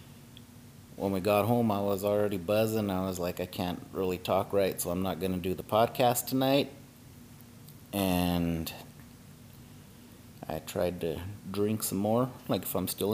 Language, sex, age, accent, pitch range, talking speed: English, male, 30-49, American, 100-130 Hz, 160 wpm